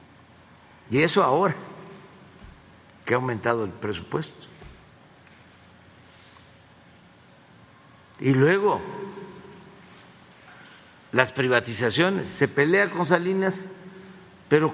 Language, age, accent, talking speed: Spanish, 60-79, Mexican, 70 wpm